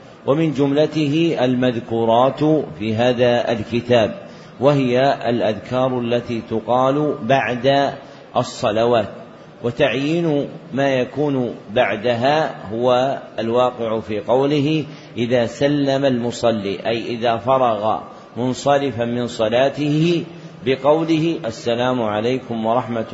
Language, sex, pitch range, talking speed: Arabic, male, 115-140 Hz, 85 wpm